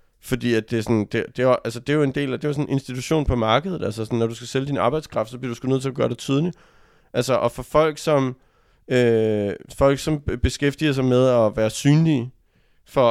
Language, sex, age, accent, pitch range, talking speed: Danish, male, 30-49, native, 115-135 Hz, 230 wpm